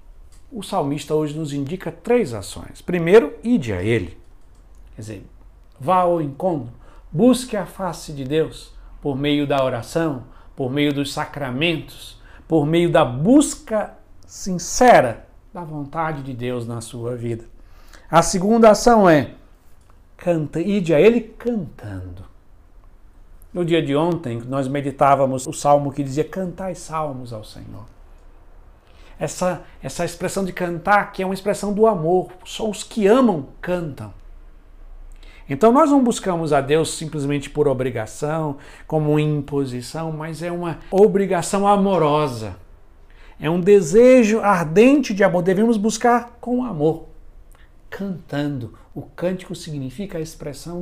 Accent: Brazilian